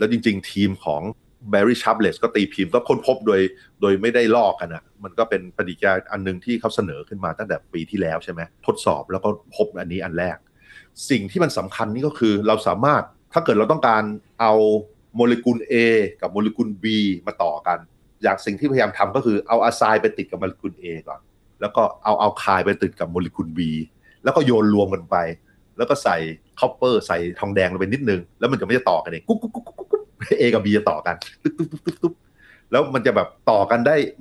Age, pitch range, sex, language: 30-49, 95-120 Hz, male, Thai